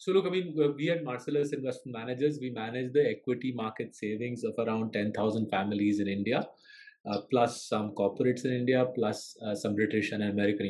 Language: English